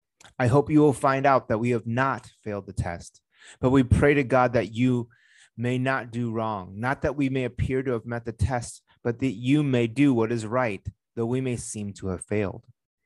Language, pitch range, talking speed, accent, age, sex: English, 105-125 Hz, 225 wpm, American, 30-49, male